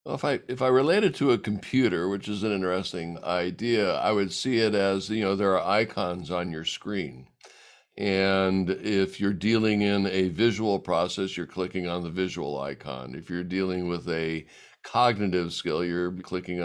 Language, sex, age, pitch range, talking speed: English, male, 60-79, 90-105 Hz, 175 wpm